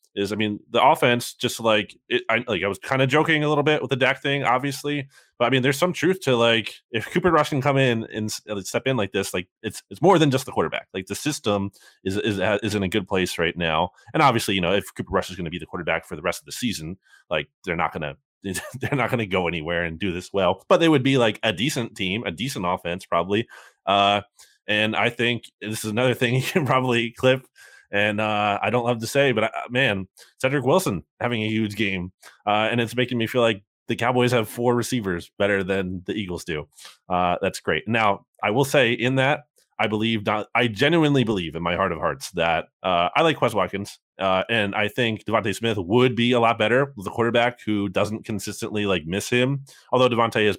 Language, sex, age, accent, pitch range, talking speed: English, male, 20-39, American, 95-125 Hz, 235 wpm